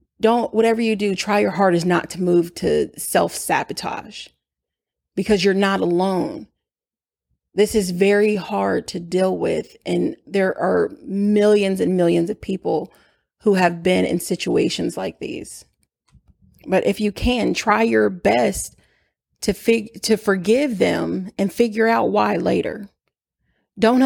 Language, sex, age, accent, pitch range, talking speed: English, female, 30-49, American, 185-230 Hz, 140 wpm